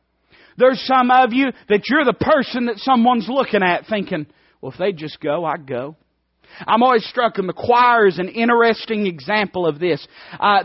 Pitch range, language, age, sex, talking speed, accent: 150-235 Hz, English, 40-59, male, 185 wpm, American